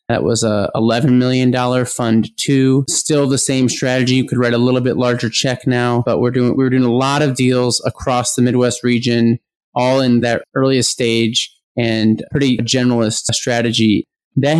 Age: 20-39